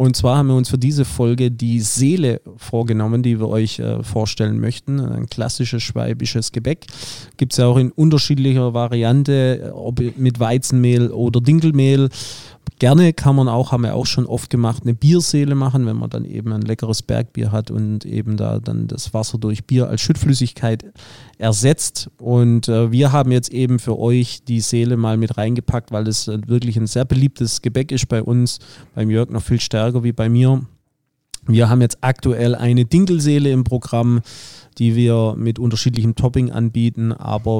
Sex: male